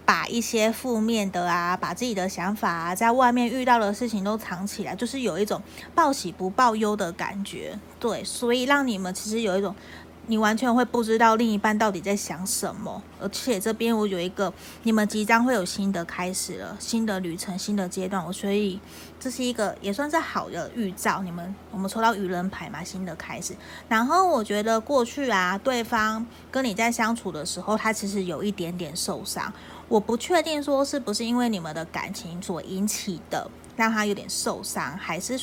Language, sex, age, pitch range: Chinese, female, 30-49, 190-240 Hz